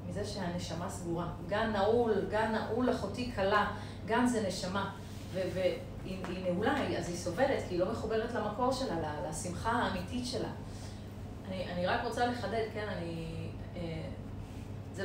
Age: 30-49